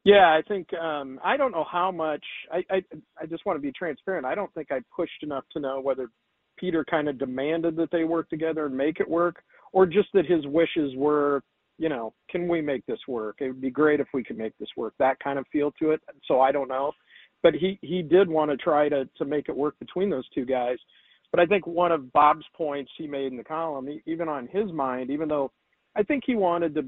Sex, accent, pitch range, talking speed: male, American, 135-165 Hz, 250 wpm